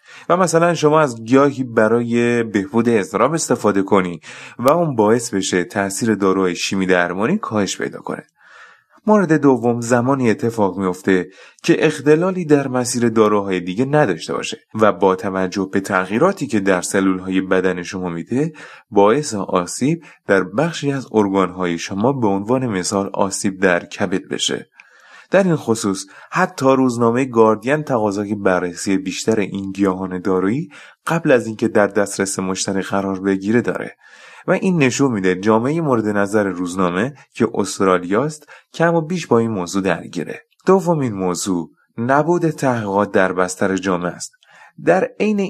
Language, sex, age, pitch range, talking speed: Persian, male, 30-49, 95-135 Hz, 140 wpm